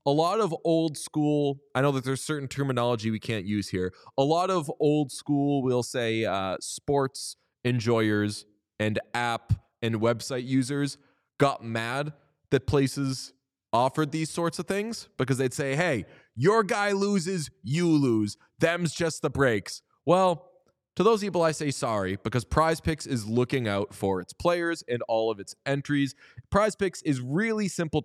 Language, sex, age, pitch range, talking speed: English, male, 20-39, 115-160 Hz, 165 wpm